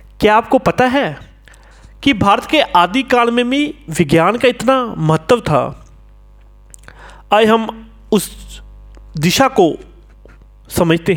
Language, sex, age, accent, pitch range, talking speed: Hindi, male, 40-59, native, 175-260 Hz, 115 wpm